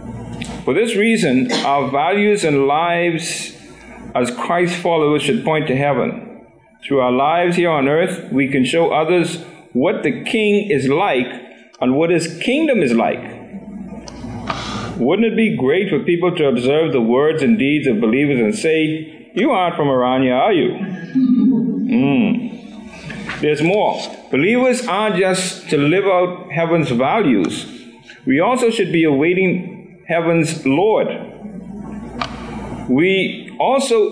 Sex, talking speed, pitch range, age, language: male, 135 wpm, 155-220 Hz, 50-69, English